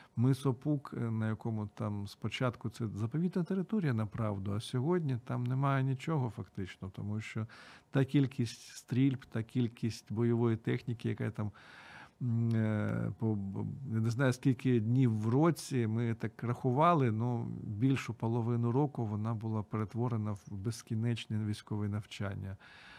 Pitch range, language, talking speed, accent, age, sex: 110-130 Hz, Ukrainian, 115 wpm, native, 50-69, male